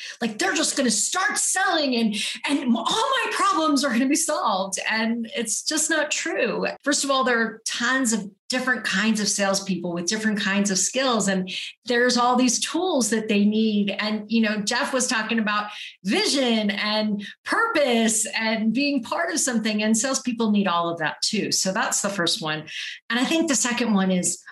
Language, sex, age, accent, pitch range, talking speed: English, female, 40-59, American, 195-255 Hz, 195 wpm